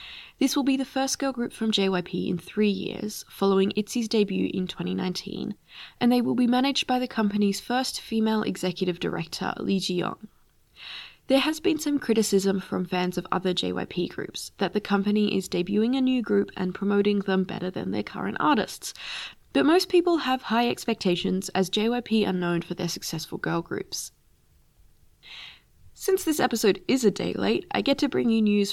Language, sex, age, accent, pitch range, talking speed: English, female, 20-39, Australian, 185-235 Hz, 180 wpm